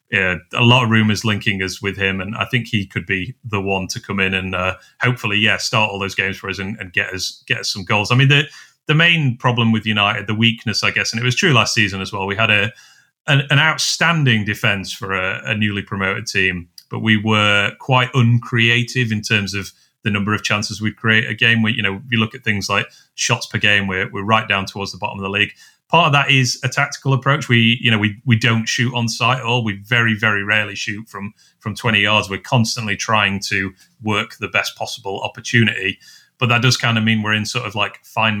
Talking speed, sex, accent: 245 wpm, male, British